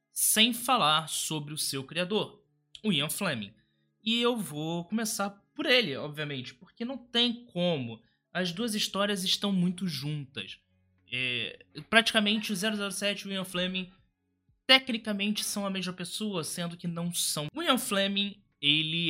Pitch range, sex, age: 130-205 Hz, male, 20-39